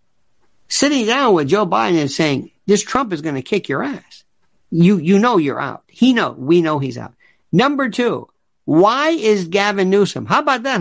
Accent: American